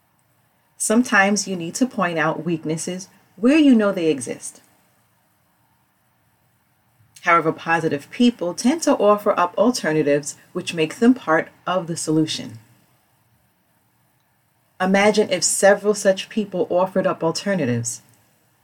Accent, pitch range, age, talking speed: American, 155-230 Hz, 40-59, 115 wpm